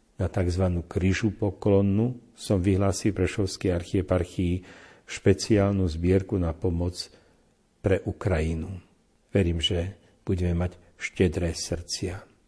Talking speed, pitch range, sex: 95 wpm, 90-105 Hz, male